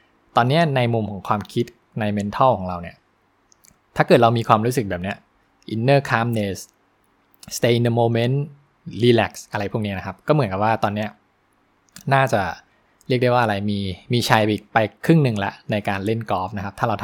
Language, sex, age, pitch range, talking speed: English, male, 20-39, 105-125 Hz, 40 wpm